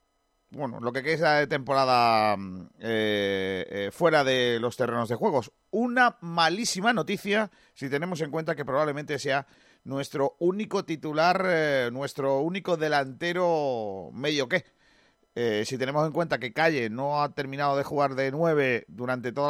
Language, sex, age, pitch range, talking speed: Spanish, male, 40-59, 130-170 Hz, 150 wpm